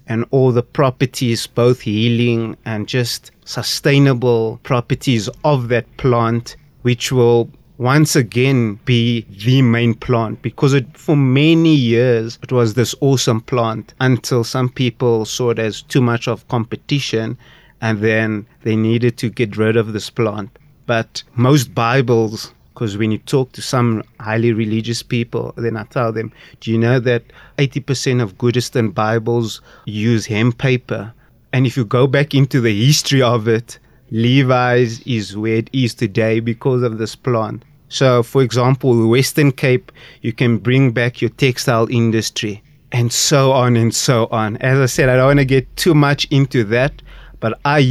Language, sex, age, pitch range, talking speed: English, male, 30-49, 115-135 Hz, 165 wpm